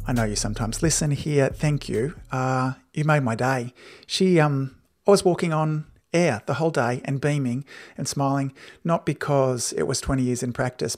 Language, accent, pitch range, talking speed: English, Australian, 130-160 Hz, 190 wpm